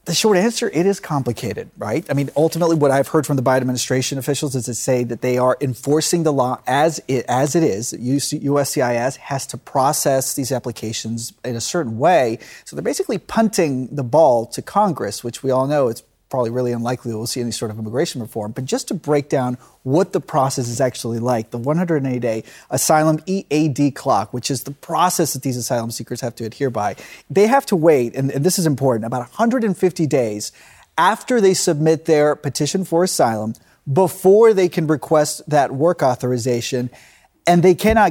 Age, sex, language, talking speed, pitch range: 30-49, male, English, 190 wpm, 125-165 Hz